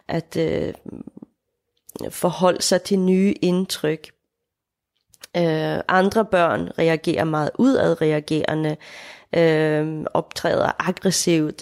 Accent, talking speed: native, 65 wpm